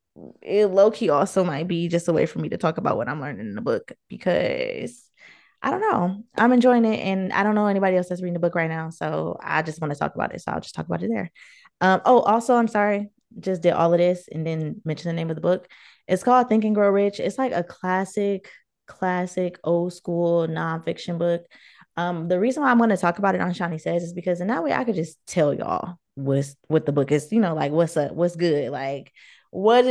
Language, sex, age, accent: English, female, 20-39, American